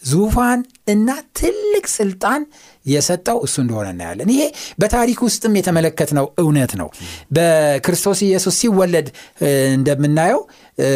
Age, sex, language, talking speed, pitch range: 60-79, male, Amharic, 95 wpm, 140-200 Hz